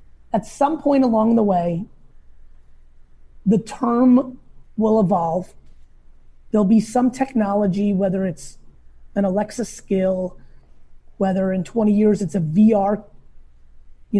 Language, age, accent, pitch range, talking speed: English, 30-49, American, 190-240 Hz, 115 wpm